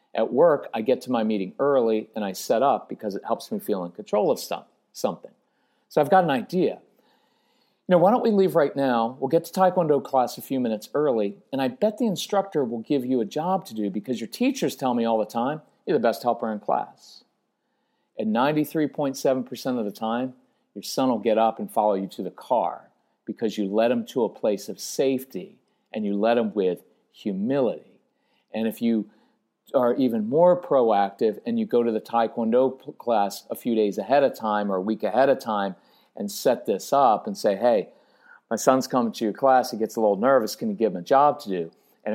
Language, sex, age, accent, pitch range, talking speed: English, male, 50-69, American, 110-150 Hz, 220 wpm